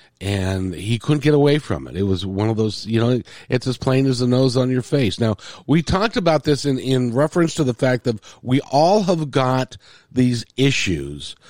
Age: 50-69